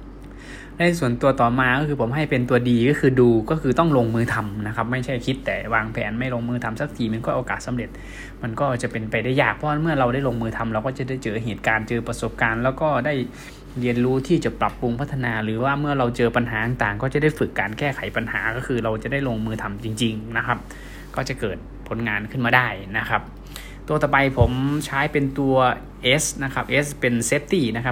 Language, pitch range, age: Thai, 115-135 Hz, 20-39